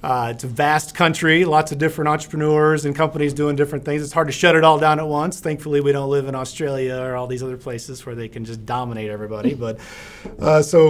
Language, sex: English, male